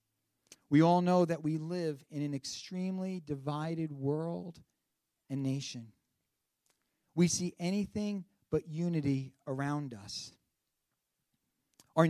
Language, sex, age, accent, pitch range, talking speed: English, male, 40-59, American, 155-195 Hz, 105 wpm